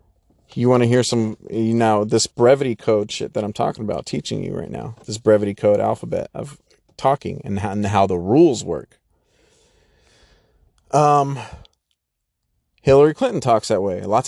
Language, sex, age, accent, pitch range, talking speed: English, male, 30-49, American, 95-120 Hz, 165 wpm